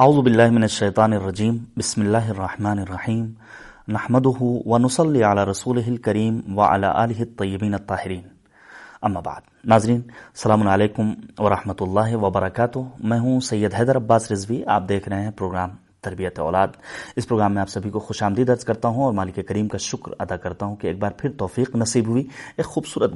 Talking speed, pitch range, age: 165 wpm, 100-130 Hz, 30-49